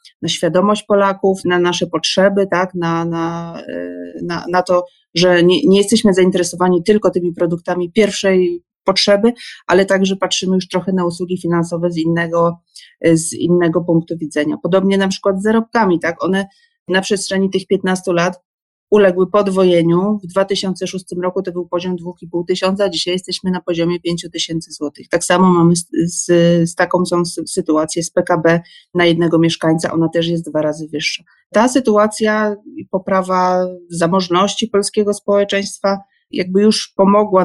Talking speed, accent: 150 wpm, native